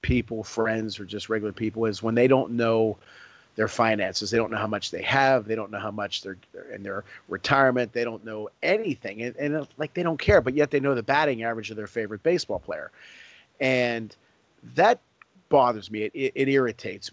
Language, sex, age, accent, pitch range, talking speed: English, male, 40-59, American, 110-145 Hz, 210 wpm